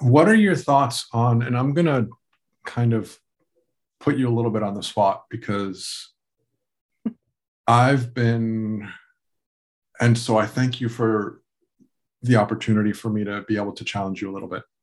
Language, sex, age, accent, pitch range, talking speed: English, male, 50-69, American, 100-125 Hz, 160 wpm